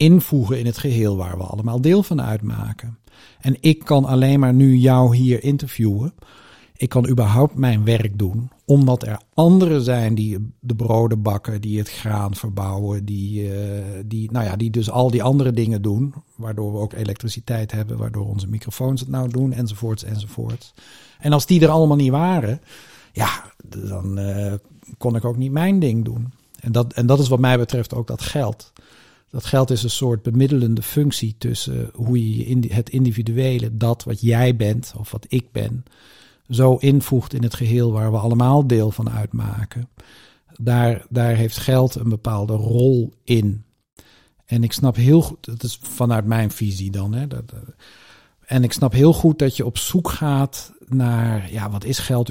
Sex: male